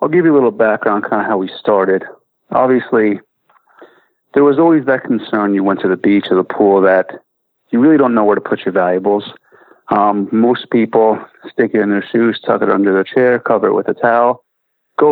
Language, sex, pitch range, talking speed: English, male, 100-125 Hz, 215 wpm